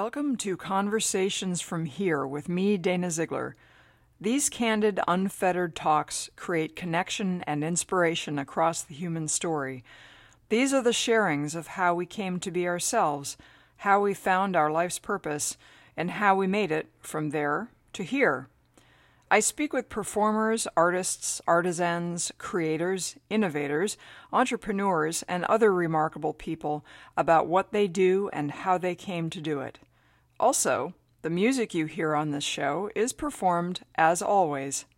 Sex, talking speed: female, 140 wpm